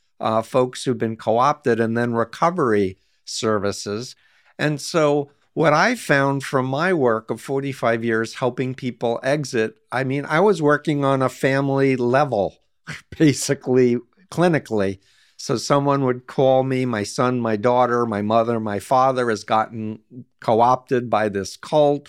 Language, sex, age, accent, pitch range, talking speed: English, male, 50-69, American, 115-140 Hz, 145 wpm